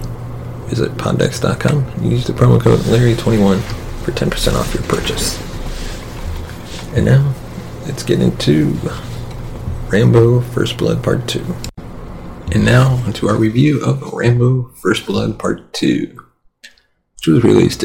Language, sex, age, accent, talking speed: English, male, 30-49, American, 125 wpm